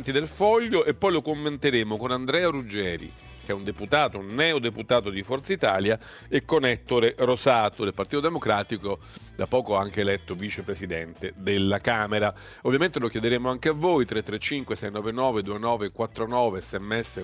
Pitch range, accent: 105-135 Hz, native